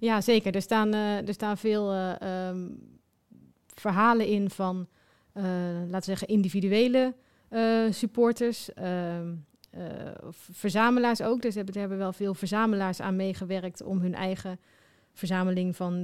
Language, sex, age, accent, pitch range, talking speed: Dutch, female, 30-49, Dutch, 185-215 Hz, 125 wpm